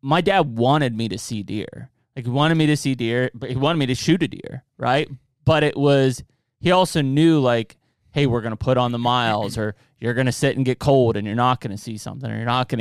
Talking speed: 265 wpm